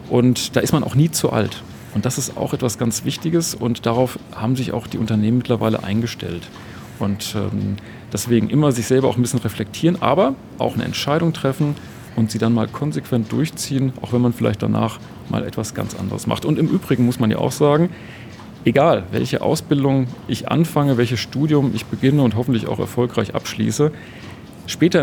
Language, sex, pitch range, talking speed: German, male, 110-135 Hz, 185 wpm